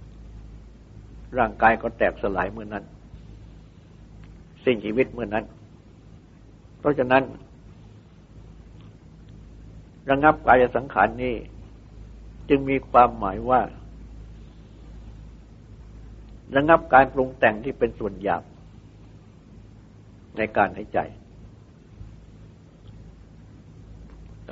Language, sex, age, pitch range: Thai, male, 60-79, 95-125 Hz